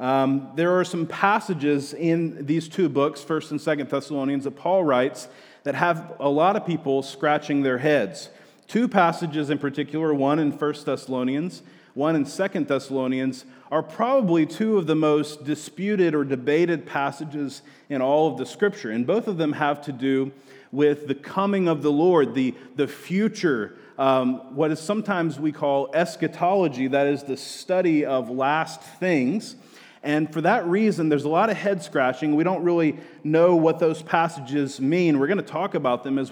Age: 30-49